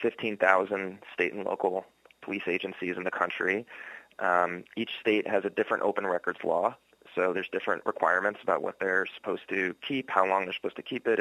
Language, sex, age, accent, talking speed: English, male, 20-39, American, 185 wpm